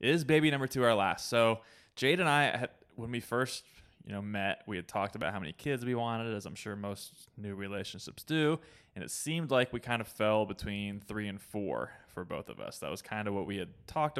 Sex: male